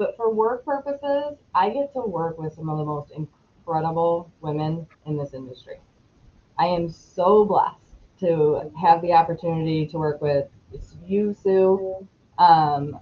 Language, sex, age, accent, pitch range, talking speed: English, female, 20-39, American, 165-195 Hz, 145 wpm